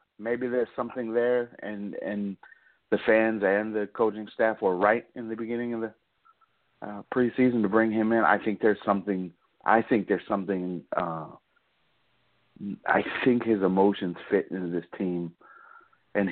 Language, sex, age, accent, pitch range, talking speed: English, male, 40-59, American, 95-115 Hz, 165 wpm